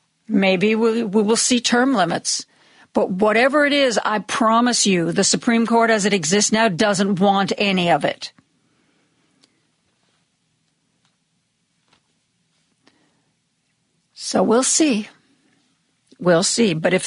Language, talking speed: English, 115 wpm